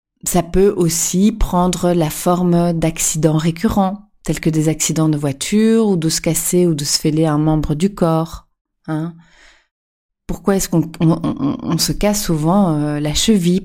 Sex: female